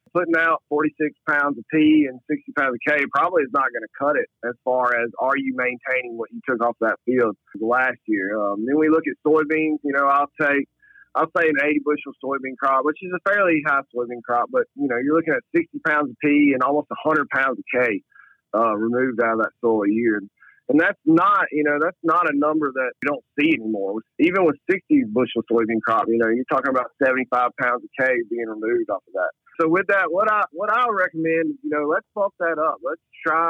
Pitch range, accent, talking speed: 125-155 Hz, American, 230 wpm